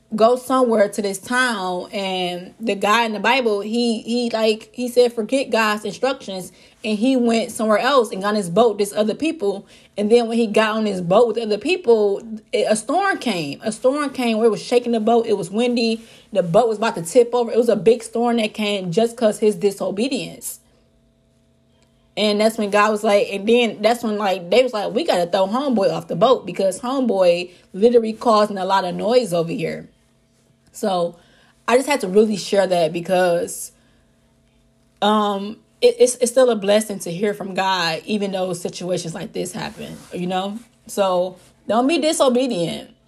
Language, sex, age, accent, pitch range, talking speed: English, female, 20-39, American, 185-230 Hz, 190 wpm